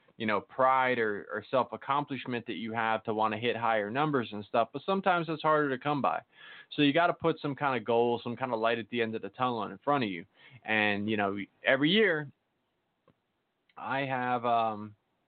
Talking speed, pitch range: 210 wpm, 110-140 Hz